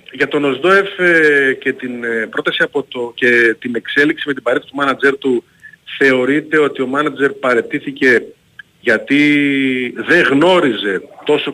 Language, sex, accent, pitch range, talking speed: Greek, male, native, 120-170 Hz, 135 wpm